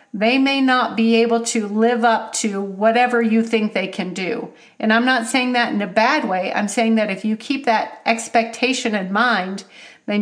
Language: English